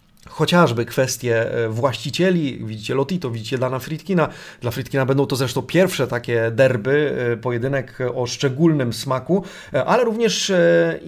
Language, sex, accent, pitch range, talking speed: Polish, male, native, 125-160 Hz, 120 wpm